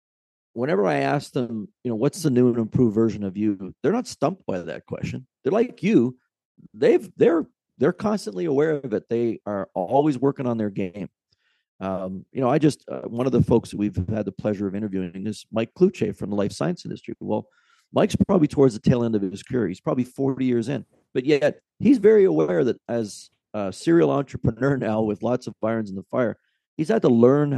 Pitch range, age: 105-135 Hz, 40-59